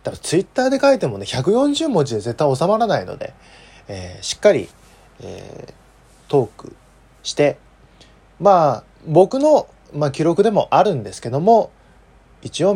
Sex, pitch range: male, 105-155 Hz